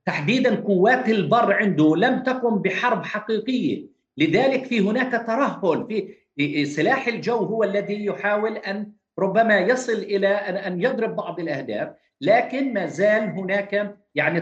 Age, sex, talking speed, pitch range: 50-69, male, 130 wpm, 185-225 Hz